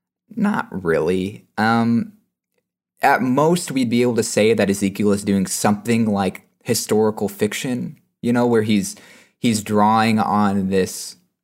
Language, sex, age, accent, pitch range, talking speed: English, male, 20-39, American, 95-110 Hz, 135 wpm